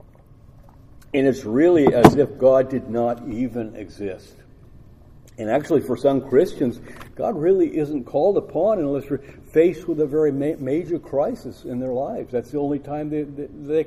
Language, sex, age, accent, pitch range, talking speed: English, male, 50-69, American, 120-150 Hz, 170 wpm